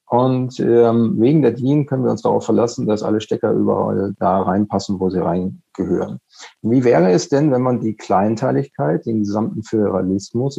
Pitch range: 110-145 Hz